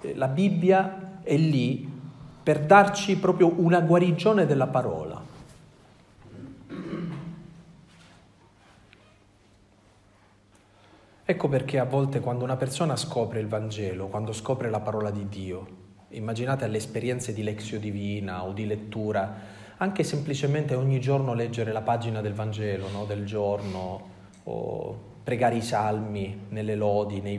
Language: Italian